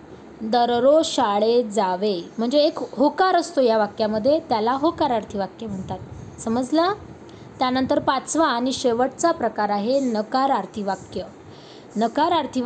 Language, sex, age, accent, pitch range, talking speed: Marathi, female, 20-39, native, 225-300 Hz, 115 wpm